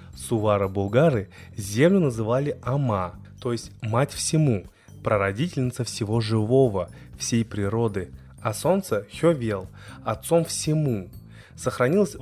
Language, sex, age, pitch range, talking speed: Russian, male, 20-39, 105-135 Hz, 95 wpm